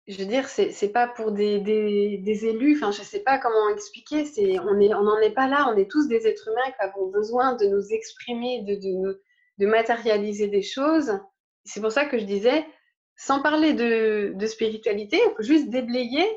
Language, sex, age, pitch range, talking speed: French, female, 20-39, 220-320 Hz, 215 wpm